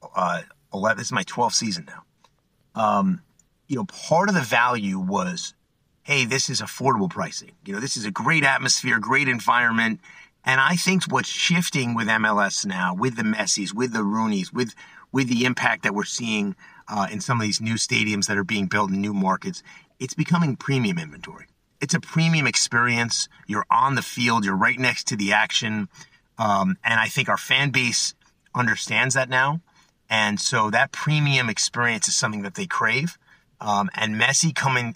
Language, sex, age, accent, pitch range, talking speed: English, male, 30-49, American, 110-170 Hz, 180 wpm